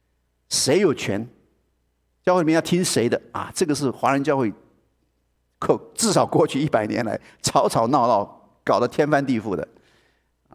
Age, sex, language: 50-69, male, Chinese